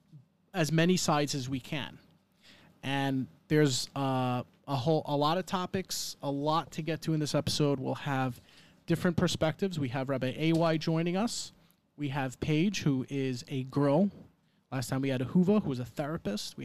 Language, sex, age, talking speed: English, male, 30-49, 185 wpm